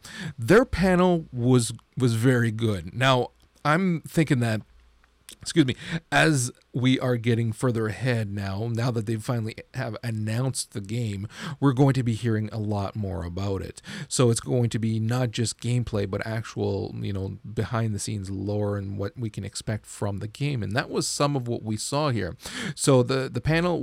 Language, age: English, 40-59